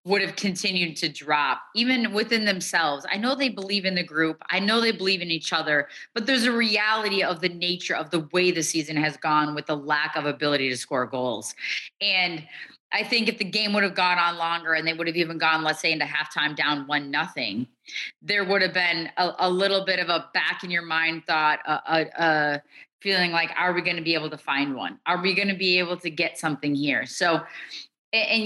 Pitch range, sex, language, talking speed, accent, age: 165-200 Hz, female, English, 230 wpm, American, 20-39